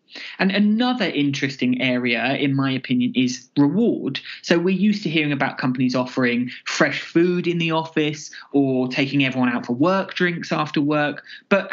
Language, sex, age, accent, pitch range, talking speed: English, male, 20-39, British, 135-175 Hz, 165 wpm